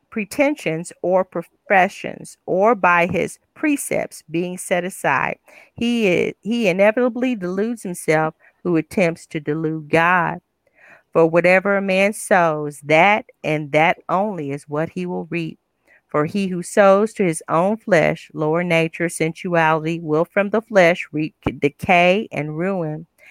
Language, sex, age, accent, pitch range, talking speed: English, female, 40-59, American, 160-200 Hz, 140 wpm